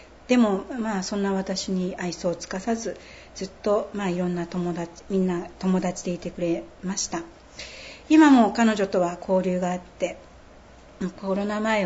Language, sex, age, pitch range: Japanese, female, 60-79, 175-205 Hz